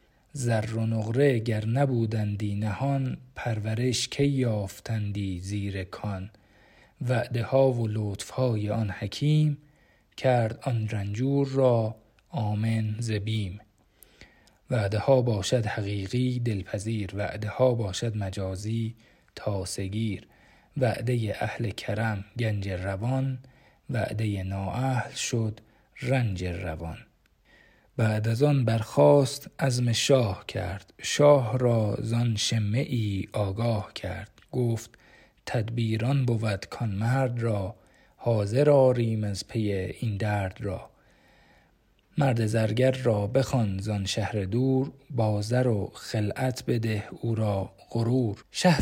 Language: Persian